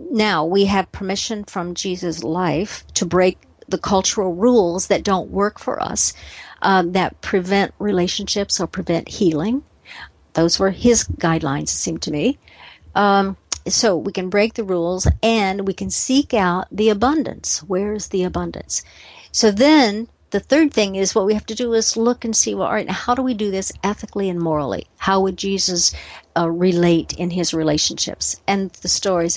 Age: 50-69